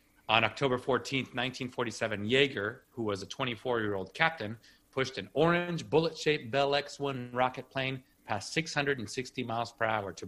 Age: 30-49